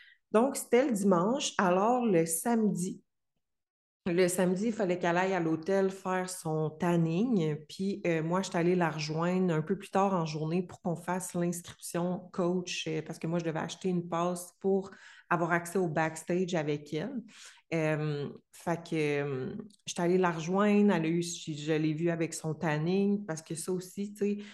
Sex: female